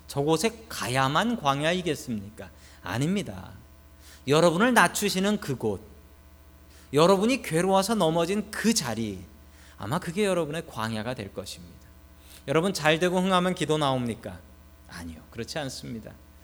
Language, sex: Korean, male